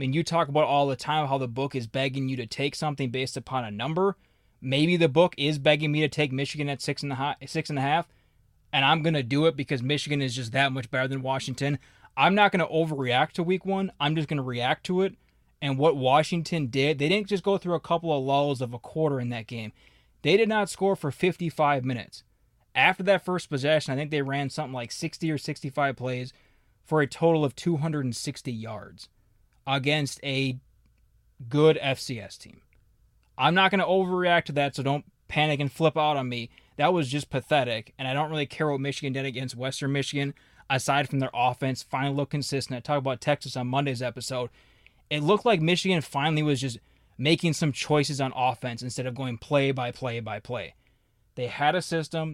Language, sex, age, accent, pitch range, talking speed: English, male, 20-39, American, 130-155 Hz, 210 wpm